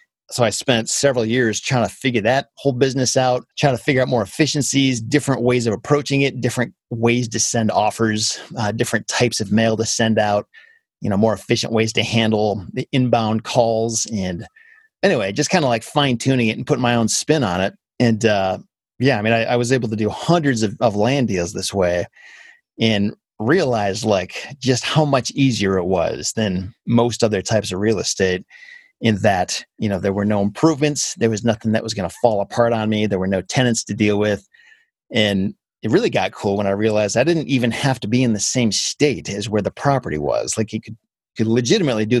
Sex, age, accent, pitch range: male, 30-49, American, 110-135 Hz